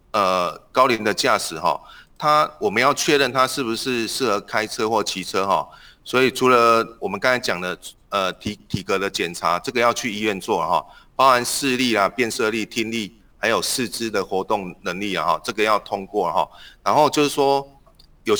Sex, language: male, Chinese